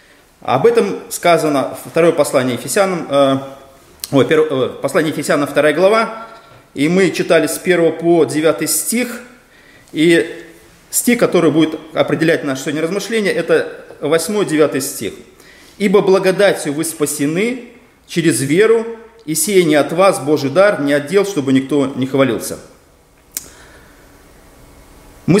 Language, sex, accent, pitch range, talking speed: Russian, male, native, 155-210 Hz, 115 wpm